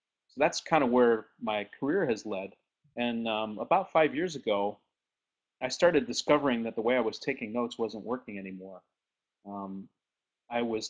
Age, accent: 30-49, American